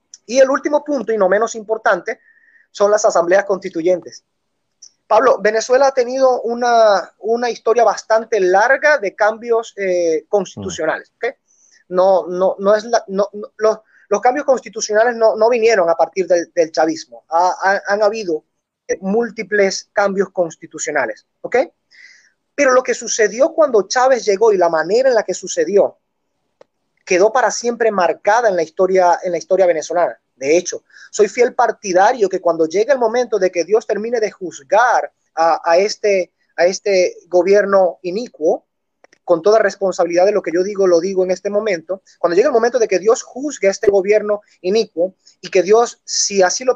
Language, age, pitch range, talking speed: Spanish, 20-39, 185-235 Hz, 155 wpm